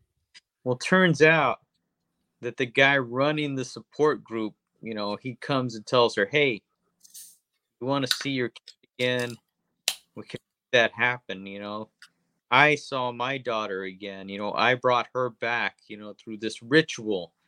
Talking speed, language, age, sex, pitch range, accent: 165 wpm, English, 30-49, male, 105-135 Hz, American